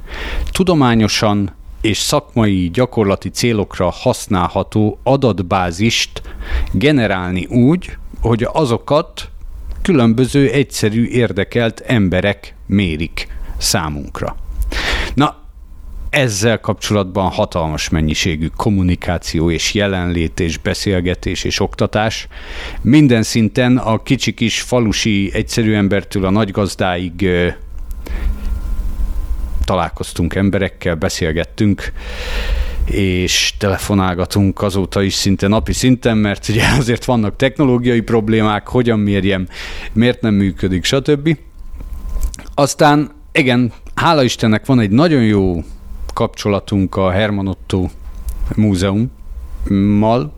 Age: 50-69